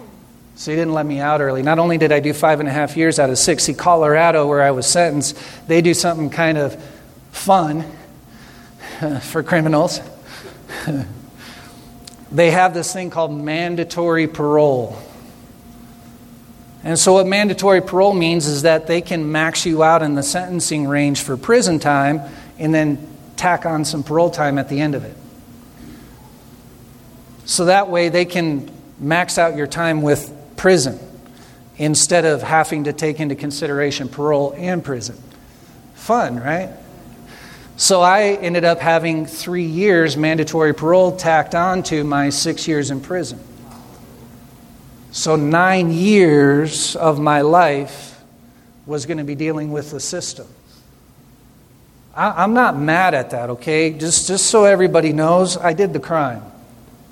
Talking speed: 150 wpm